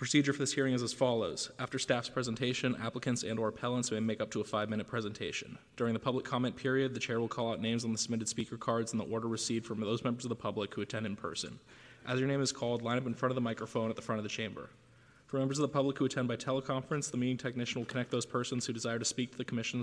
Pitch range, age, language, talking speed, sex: 115-130 Hz, 20-39, English, 280 wpm, male